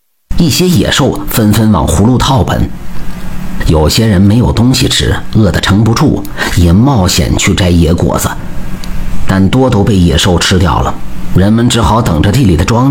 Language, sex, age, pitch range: Chinese, male, 50-69, 90-125 Hz